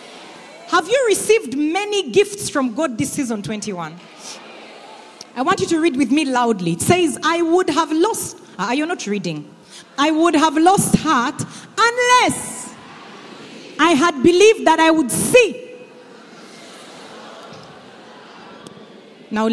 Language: English